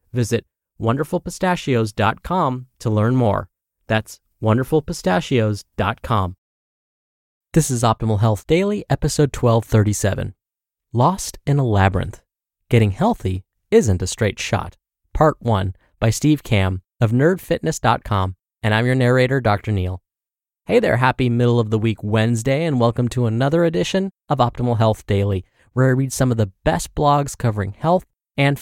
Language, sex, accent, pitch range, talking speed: English, male, American, 105-140 Hz, 135 wpm